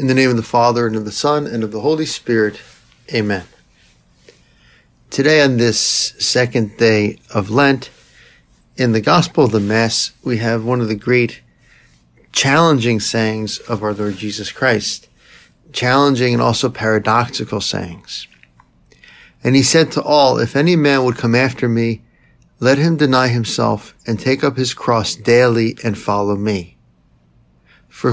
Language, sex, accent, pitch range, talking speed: English, male, American, 110-130 Hz, 155 wpm